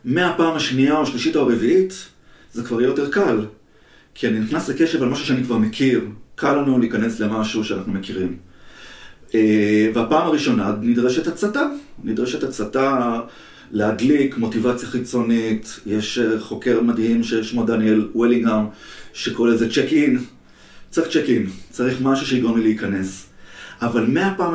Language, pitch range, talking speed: Hebrew, 110-145 Hz, 135 wpm